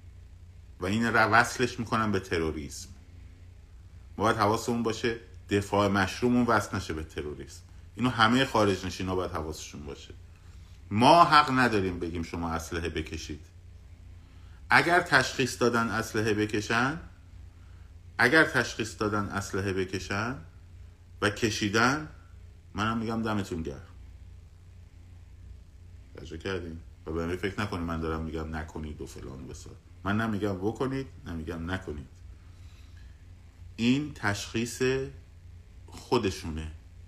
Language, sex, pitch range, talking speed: Persian, male, 85-100 Hz, 105 wpm